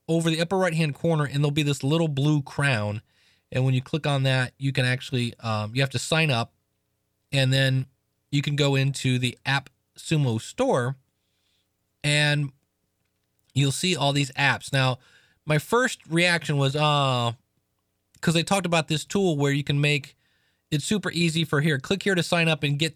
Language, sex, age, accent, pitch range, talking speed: English, male, 20-39, American, 125-165 Hz, 190 wpm